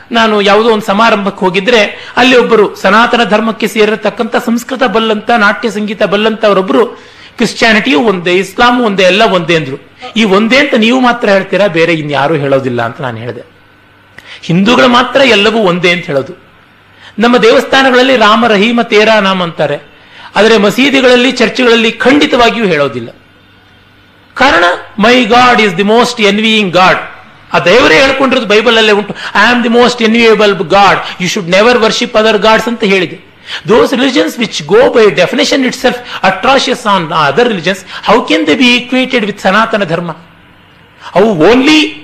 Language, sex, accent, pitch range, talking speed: Kannada, male, native, 180-240 Hz, 145 wpm